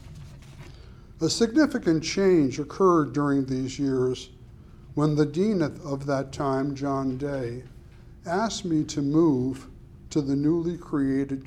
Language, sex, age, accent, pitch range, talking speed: English, male, 60-79, American, 135-160 Hz, 120 wpm